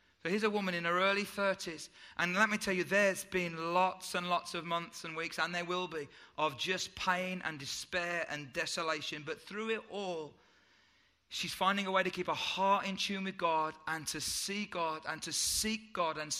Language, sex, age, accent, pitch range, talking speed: English, male, 30-49, British, 155-185 Hz, 210 wpm